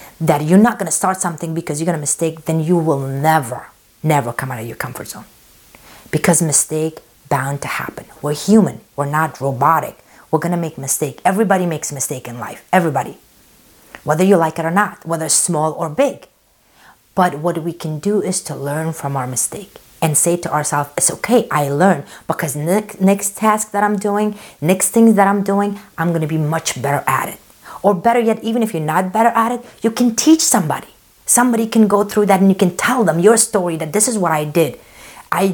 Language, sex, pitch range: English, female, 155-205 Hz